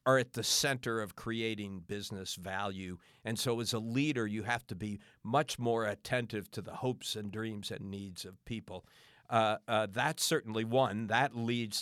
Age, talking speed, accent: 50-69, 185 wpm, American